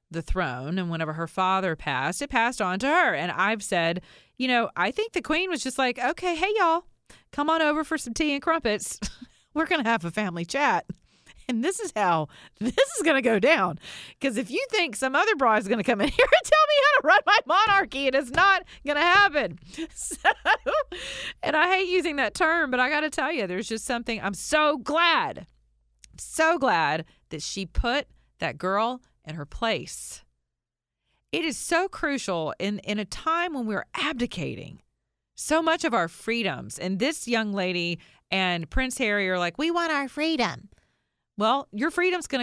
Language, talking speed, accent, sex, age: English, 200 wpm, American, female, 40-59